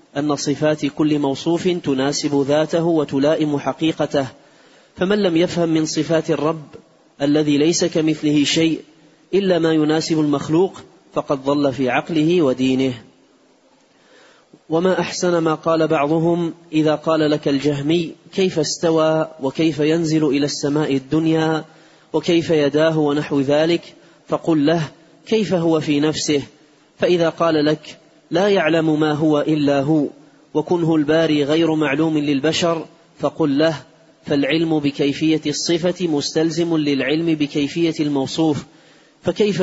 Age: 30-49